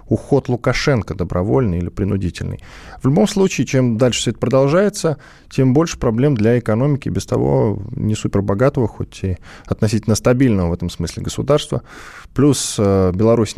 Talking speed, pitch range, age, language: 140 wpm, 95-130 Hz, 20-39, Russian